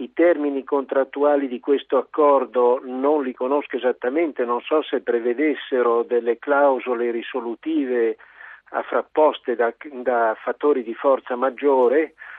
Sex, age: male, 50-69